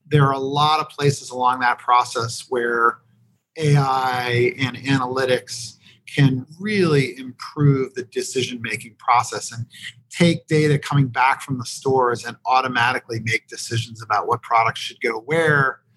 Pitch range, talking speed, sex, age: 120-150 Hz, 140 wpm, male, 40-59